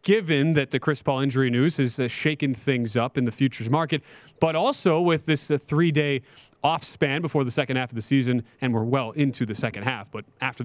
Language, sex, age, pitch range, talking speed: English, male, 30-49, 130-160 Hz, 215 wpm